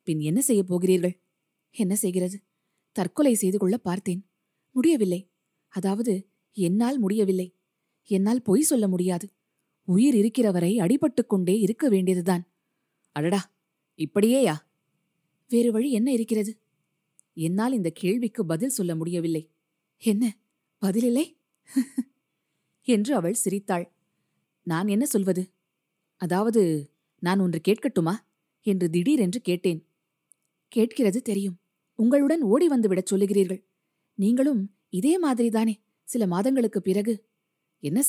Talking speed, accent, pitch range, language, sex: 100 wpm, native, 180-230 Hz, Tamil, female